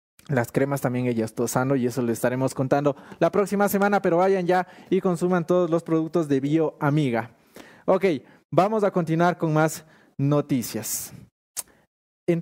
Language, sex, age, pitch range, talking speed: English, male, 20-39, 130-175 Hz, 150 wpm